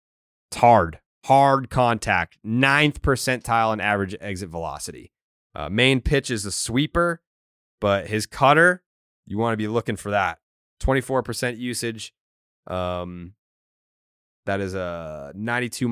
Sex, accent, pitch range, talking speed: male, American, 90-115 Hz, 125 wpm